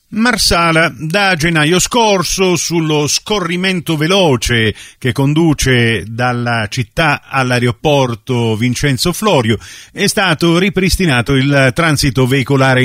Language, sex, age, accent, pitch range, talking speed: Italian, male, 50-69, native, 115-150 Hz, 95 wpm